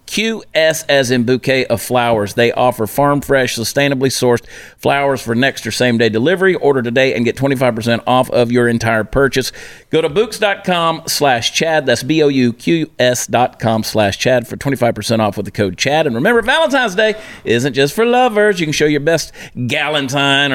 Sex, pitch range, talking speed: male, 125-170 Hz, 170 wpm